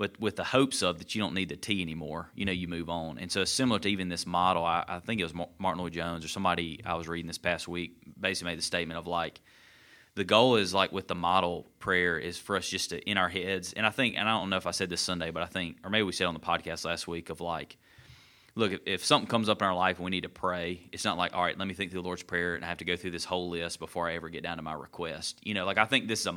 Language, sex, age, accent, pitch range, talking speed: English, male, 30-49, American, 85-95 Hz, 315 wpm